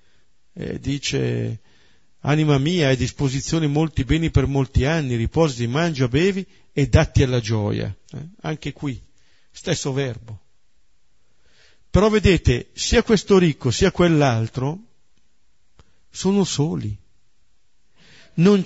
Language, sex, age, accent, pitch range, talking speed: Italian, male, 50-69, native, 115-170 Hz, 105 wpm